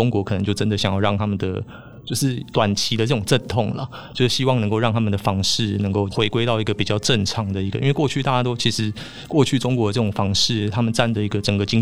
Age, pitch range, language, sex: 20-39, 100-115 Hz, Chinese, male